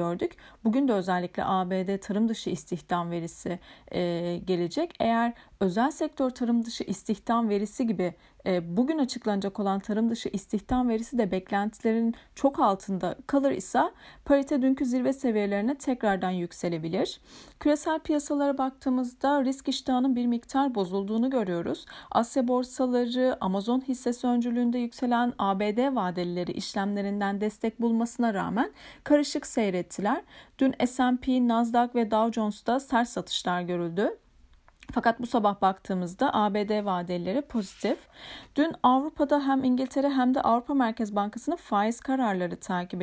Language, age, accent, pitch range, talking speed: Turkish, 40-59, native, 195-265 Hz, 125 wpm